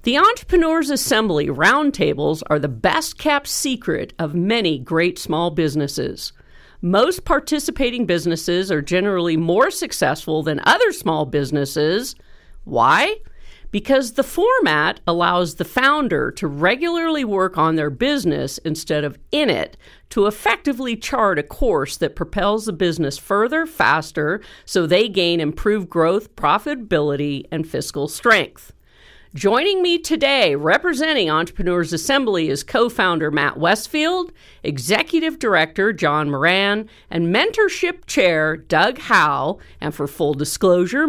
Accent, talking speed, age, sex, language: American, 125 wpm, 50-69, female, English